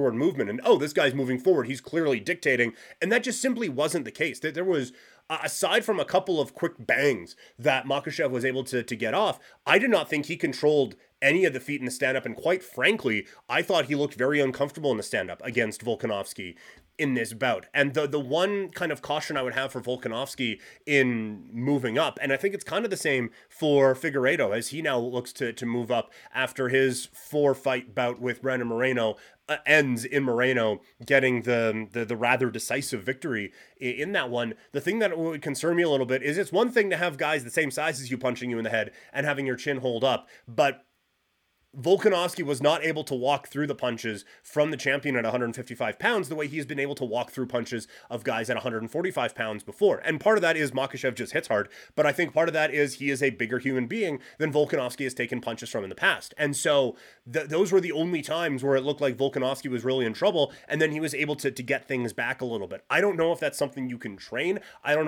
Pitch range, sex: 125-150 Hz, male